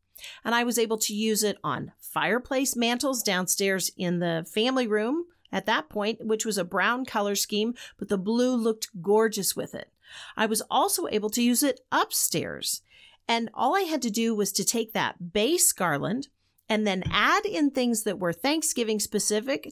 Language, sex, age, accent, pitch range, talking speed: English, female, 40-59, American, 205-270 Hz, 185 wpm